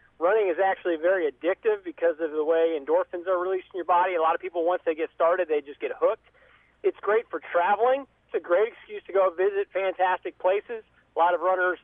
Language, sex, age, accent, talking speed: English, male, 40-59, American, 225 wpm